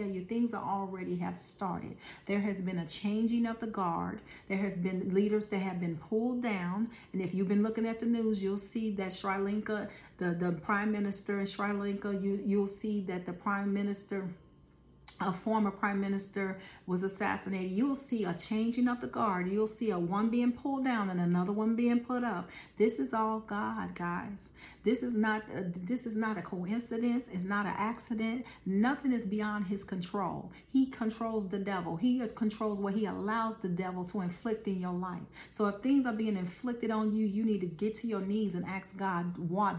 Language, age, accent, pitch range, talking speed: English, 40-59, American, 185-220 Hz, 205 wpm